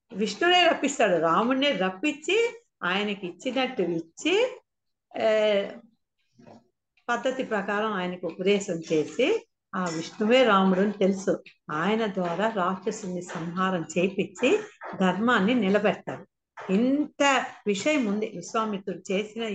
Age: 50-69